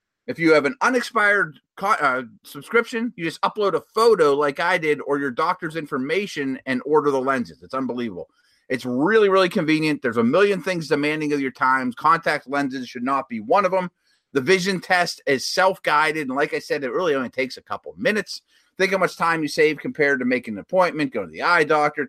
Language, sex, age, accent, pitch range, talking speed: English, male, 30-49, American, 130-185 Hz, 210 wpm